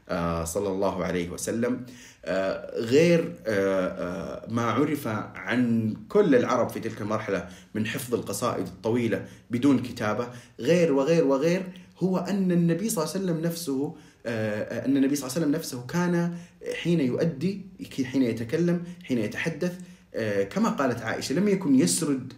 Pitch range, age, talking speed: 110-155 Hz, 30-49, 150 wpm